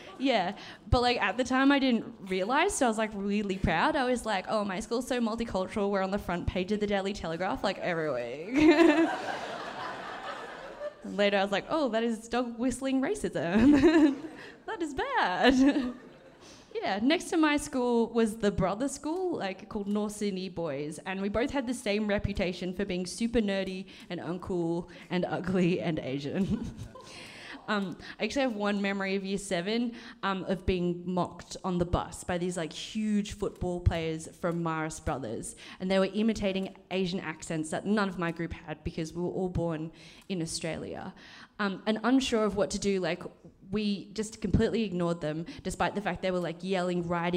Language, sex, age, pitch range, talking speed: English, female, 20-39, 175-230 Hz, 180 wpm